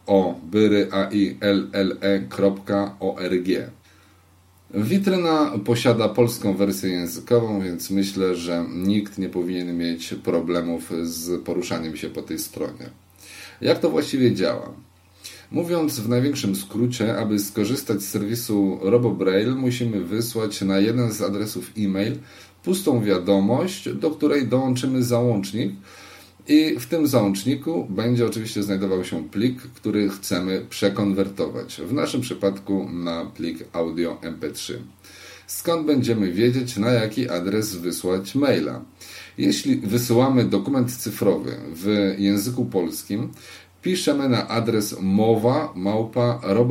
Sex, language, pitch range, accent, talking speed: male, Polish, 95-120 Hz, native, 110 wpm